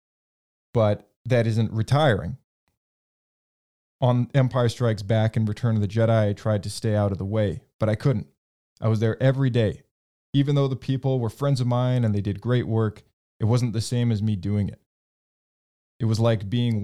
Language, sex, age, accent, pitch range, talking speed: English, male, 20-39, American, 105-120 Hz, 190 wpm